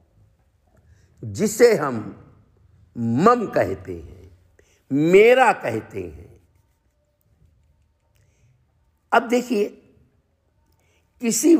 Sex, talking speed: male, 55 wpm